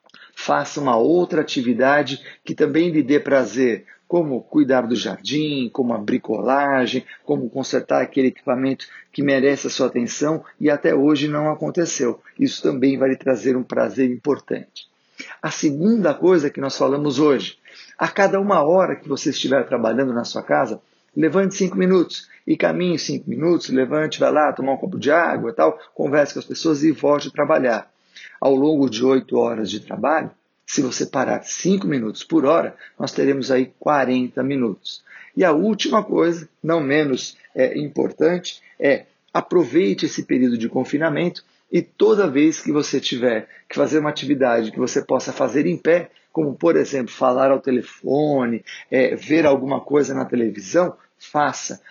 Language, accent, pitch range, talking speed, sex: Portuguese, Brazilian, 130-160 Hz, 165 wpm, male